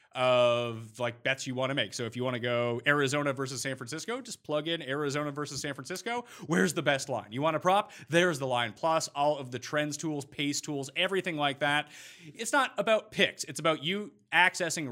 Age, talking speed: 30-49, 215 wpm